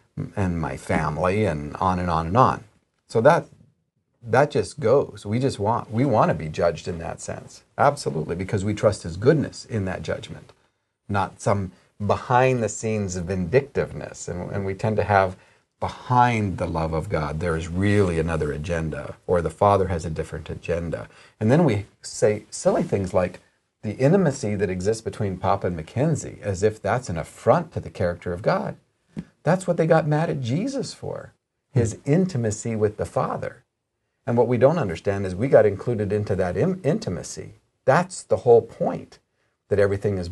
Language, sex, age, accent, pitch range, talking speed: English, male, 40-59, American, 95-125 Hz, 180 wpm